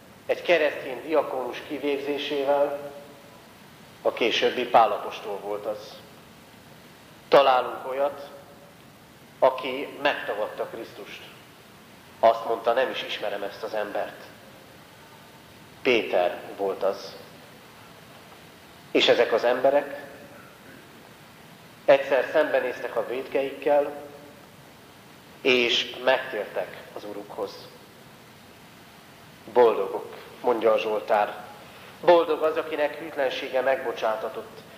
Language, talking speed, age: Hungarian, 80 wpm, 40-59